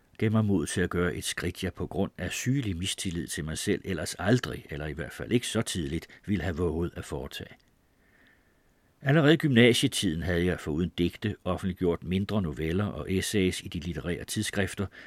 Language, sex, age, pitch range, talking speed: Danish, male, 60-79, 85-115 Hz, 180 wpm